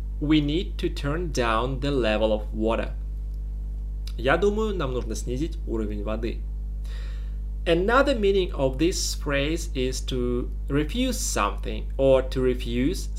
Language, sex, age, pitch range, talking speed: English, male, 30-49, 110-170 Hz, 125 wpm